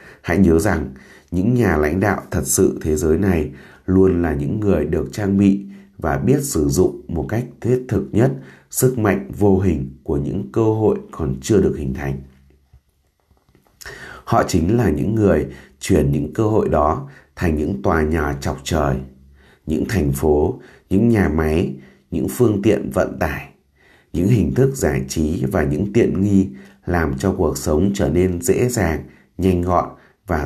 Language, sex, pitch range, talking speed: Vietnamese, male, 75-100 Hz, 175 wpm